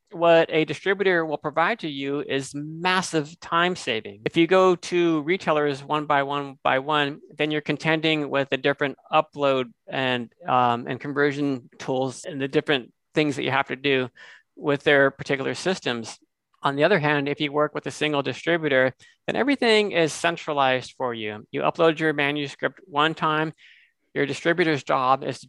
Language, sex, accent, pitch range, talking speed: English, male, American, 130-155 Hz, 170 wpm